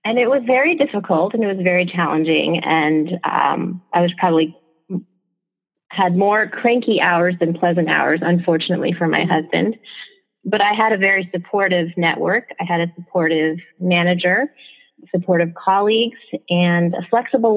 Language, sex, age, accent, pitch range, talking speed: English, female, 30-49, American, 165-190 Hz, 145 wpm